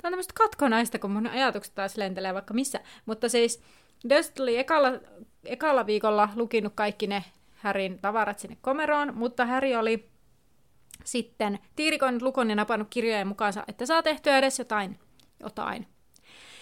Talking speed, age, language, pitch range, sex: 150 wpm, 30-49, Finnish, 205-245 Hz, female